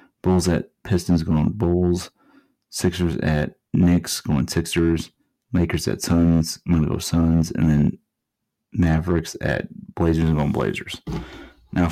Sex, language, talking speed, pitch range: male, English, 130 wpm, 80-85 Hz